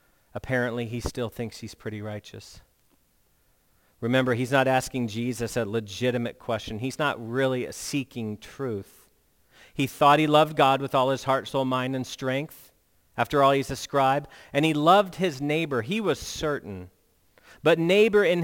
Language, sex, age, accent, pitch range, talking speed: English, male, 40-59, American, 135-180 Hz, 160 wpm